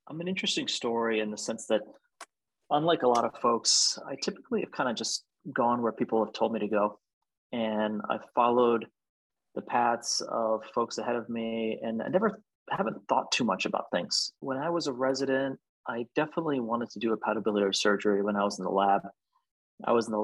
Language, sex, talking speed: English, male, 205 wpm